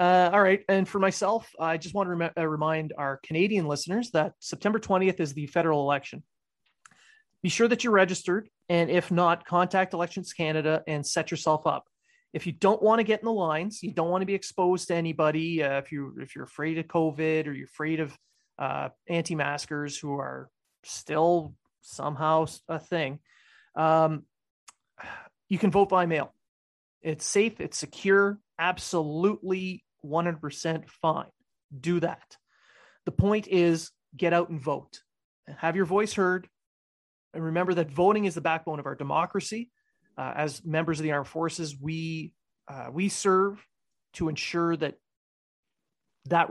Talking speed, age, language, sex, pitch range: 160 wpm, 30-49, English, male, 155-190 Hz